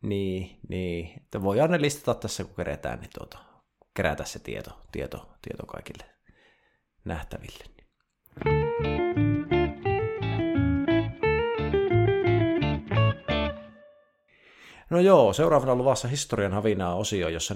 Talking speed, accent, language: 90 wpm, native, Finnish